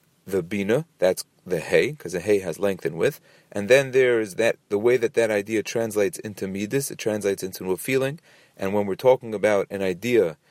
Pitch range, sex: 100-145 Hz, male